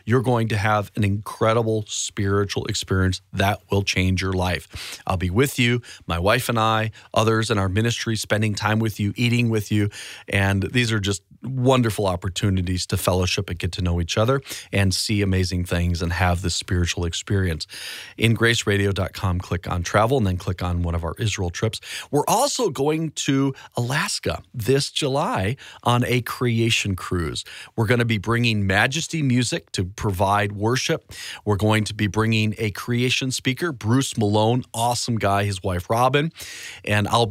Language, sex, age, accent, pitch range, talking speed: English, male, 40-59, American, 95-120 Hz, 170 wpm